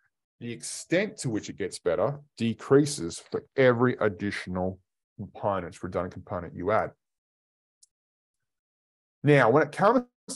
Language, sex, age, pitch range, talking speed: English, male, 30-49, 105-150 Hz, 110 wpm